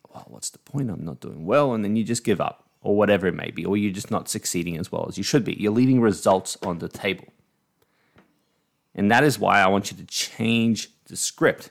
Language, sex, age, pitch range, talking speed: English, male, 20-39, 95-125 Hz, 240 wpm